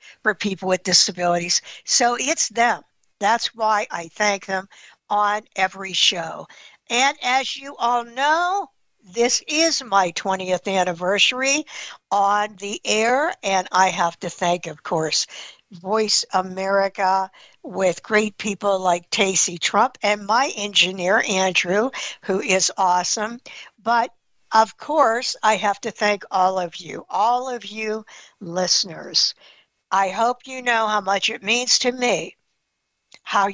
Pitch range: 185-225 Hz